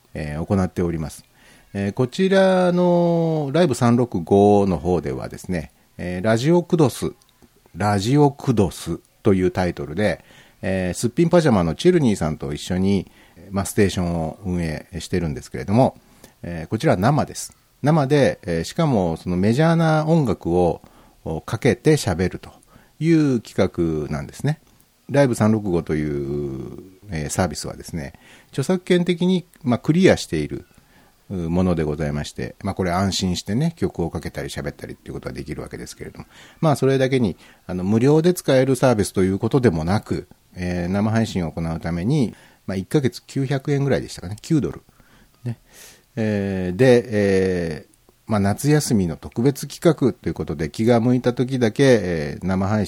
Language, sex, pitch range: Japanese, male, 90-135 Hz